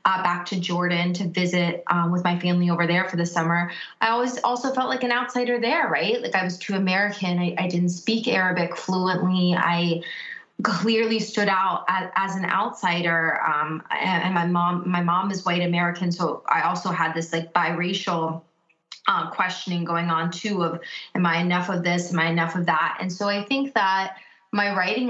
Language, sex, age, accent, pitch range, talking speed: English, female, 20-39, American, 165-190 Hz, 195 wpm